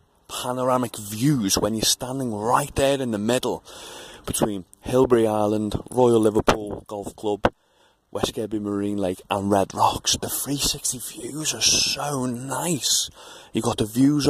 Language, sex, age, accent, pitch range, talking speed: English, male, 30-49, British, 110-130 Hz, 145 wpm